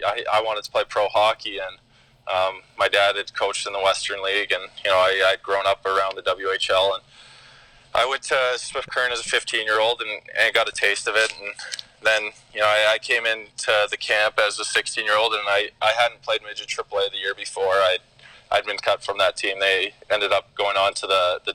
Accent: American